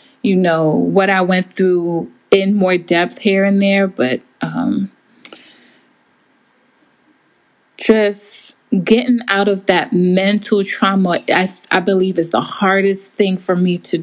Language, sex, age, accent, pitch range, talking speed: English, female, 20-39, American, 180-215 Hz, 135 wpm